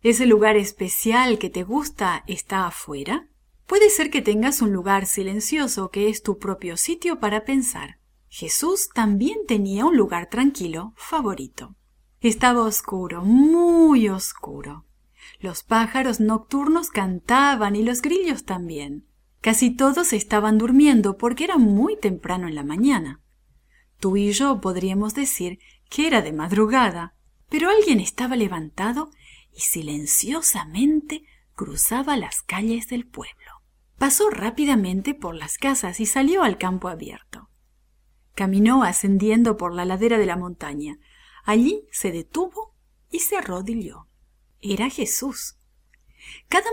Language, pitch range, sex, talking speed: English, 190-275 Hz, female, 125 wpm